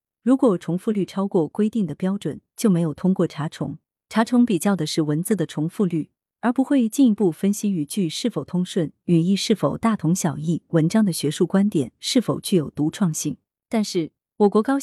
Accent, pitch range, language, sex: native, 160-215 Hz, Chinese, female